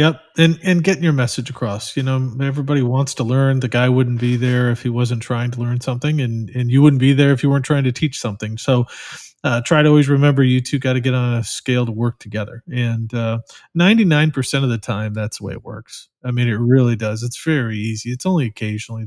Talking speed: 240 wpm